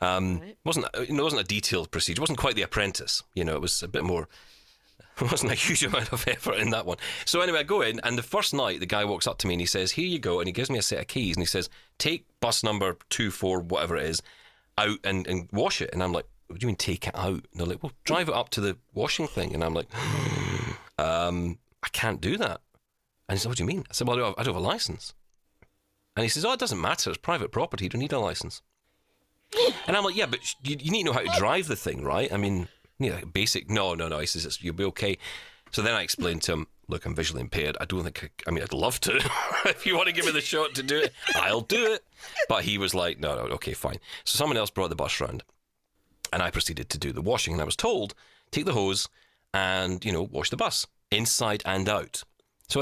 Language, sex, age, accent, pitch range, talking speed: English, male, 30-49, British, 90-120 Hz, 270 wpm